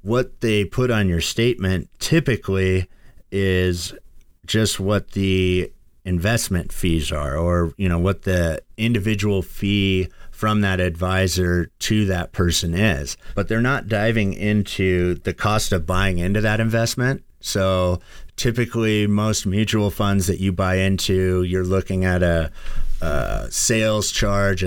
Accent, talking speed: American, 135 wpm